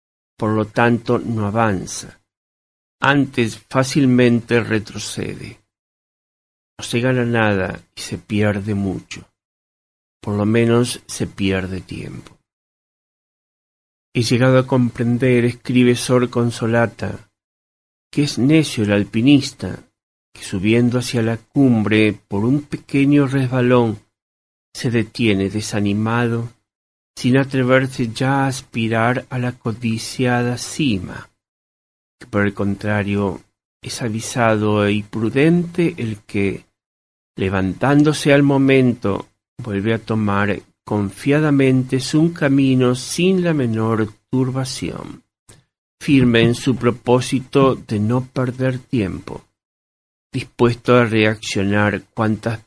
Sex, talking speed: male, 105 wpm